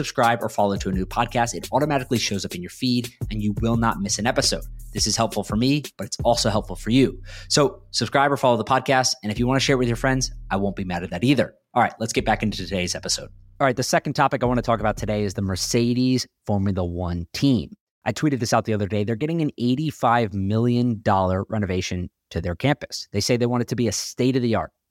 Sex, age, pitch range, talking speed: male, 30-49, 95-120 Hz, 255 wpm